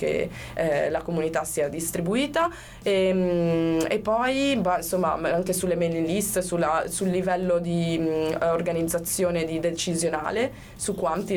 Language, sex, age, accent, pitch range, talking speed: Italian, female, 20-39, native, 165-205 Hz, 135 wpm